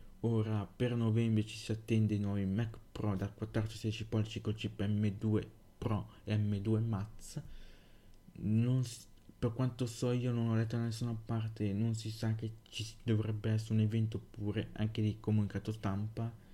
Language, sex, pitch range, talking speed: Italian, male, 100-110 Hz, 165 wpm